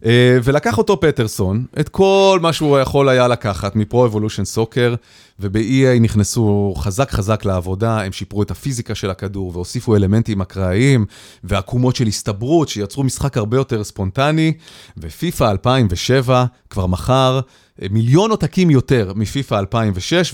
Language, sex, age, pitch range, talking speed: Hebrew, male, 30-49, 110-160 Hz, 130 wpm